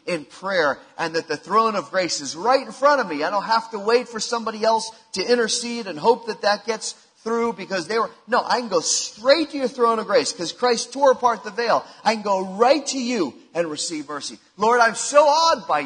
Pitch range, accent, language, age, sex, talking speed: 160-245 Hz, American, English, 40-59, male, 240 wpm